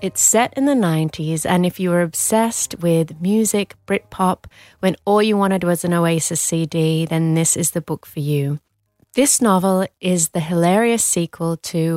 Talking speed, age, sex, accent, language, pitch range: 175 wpm, 20-39, female, British, English, 160-190 Hz